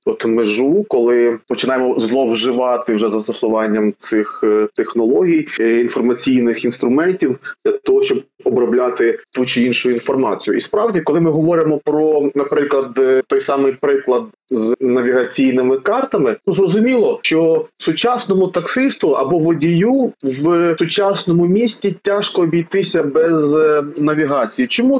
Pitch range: 130-205 Hz